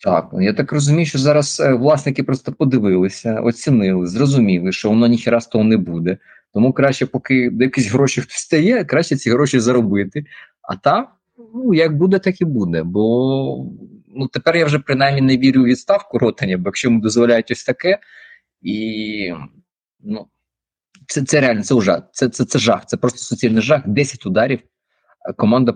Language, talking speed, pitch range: Ukrainian, 170 wpm, 105-135 Hz